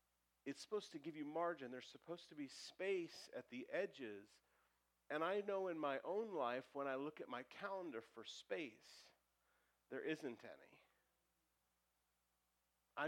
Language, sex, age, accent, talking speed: English, male, 40-59, American, 150 wpm